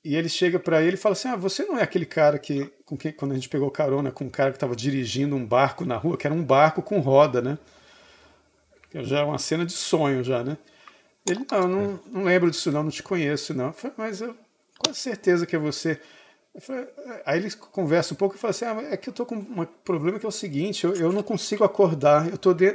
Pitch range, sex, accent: 145-185 Hz, male, Brazilian